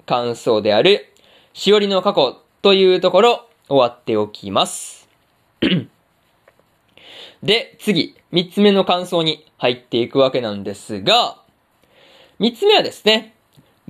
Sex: male